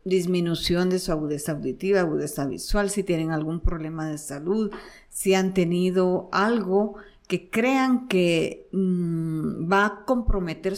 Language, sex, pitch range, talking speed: Spanish, female, 180-235 Hz, 130 wpm